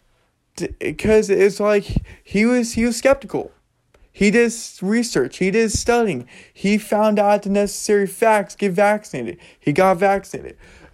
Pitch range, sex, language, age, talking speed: 160-205 Hz, male, English, 20-39, 135 wpm